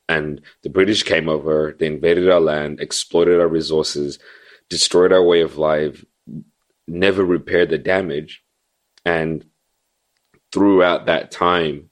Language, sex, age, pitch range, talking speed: English, male, 30-49, 75-85 Hz, 125 wpm